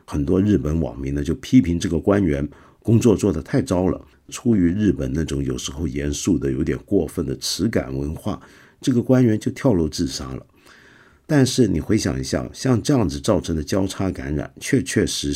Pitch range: 70-100 Hz